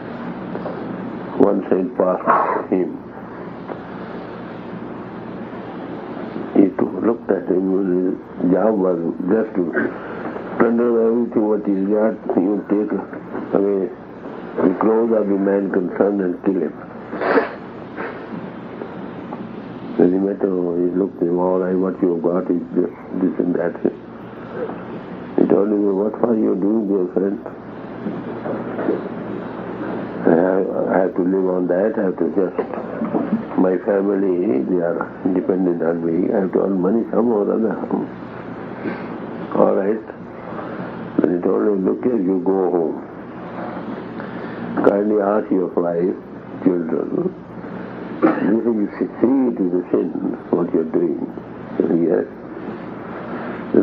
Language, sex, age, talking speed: English, male, 60-79, 125 wpm